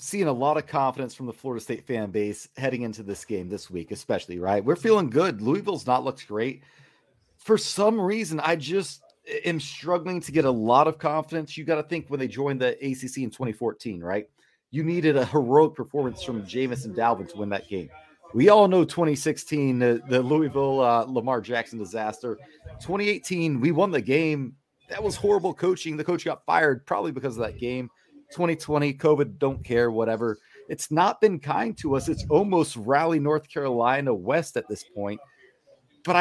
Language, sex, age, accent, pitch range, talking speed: English, male, 30-49, American, 125-160 Hz, 185 wpm